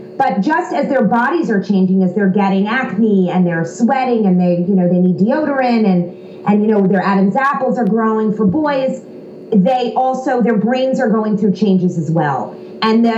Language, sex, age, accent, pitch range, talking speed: English, female, 30-49, American, 195-255 Hz, 195 wpm